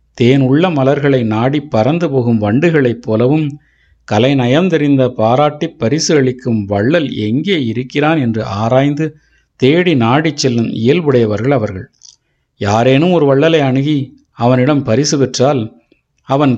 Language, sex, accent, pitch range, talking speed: Tamil, male, native, 115-145 Hz, 115 wpm